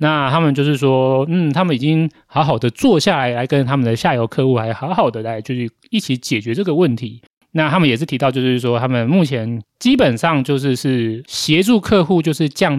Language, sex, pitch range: Chinese, male, 120-155 Hz